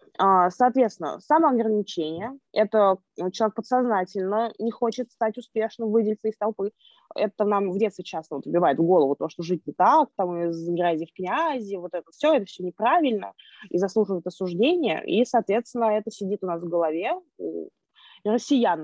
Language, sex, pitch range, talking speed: Russian, female, 195-255 Hz, 160 wpm